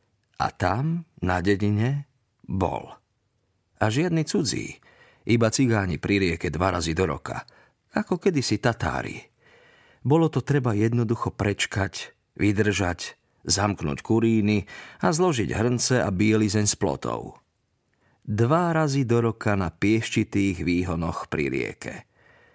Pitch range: 95-115 Hz